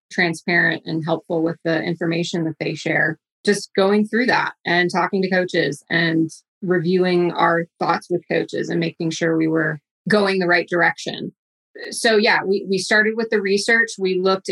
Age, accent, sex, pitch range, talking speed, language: 20-39, American, female, 170-195 Hz, 175 wpm, English